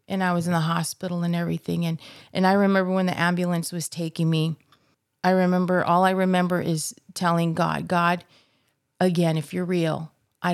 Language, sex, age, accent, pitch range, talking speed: English, female, 30-49, American, 155-175 Hz, 180 wpm